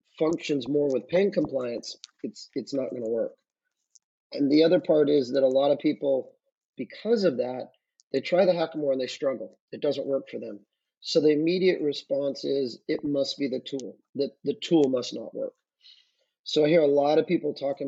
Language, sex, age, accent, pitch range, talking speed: English, male, 30-49, American, 135-165 Hz, 200 wpm